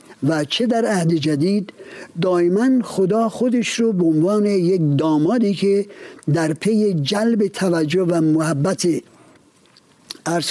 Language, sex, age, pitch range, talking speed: Persian, male, 60-79, 160-215 Hz, 120 wpm